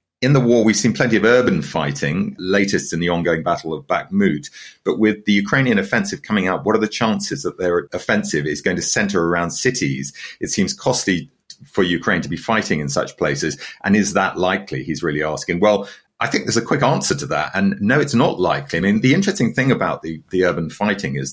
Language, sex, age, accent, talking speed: English, male, 40-59, British, 220 wpm